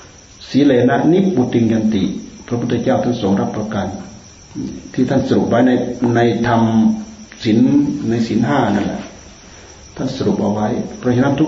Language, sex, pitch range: Thai, male, 100-130 Hz